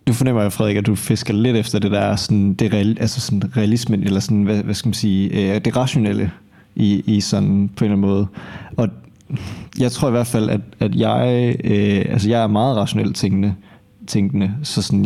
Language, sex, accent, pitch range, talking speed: Danish, male, native, 100-115 Hz, 205 wpm